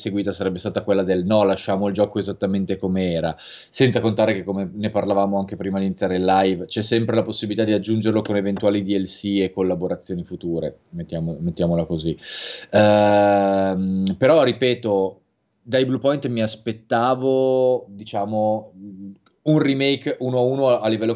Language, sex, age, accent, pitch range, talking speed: Italian, male, 20-39, native, 95-115 Hz, 155 wpm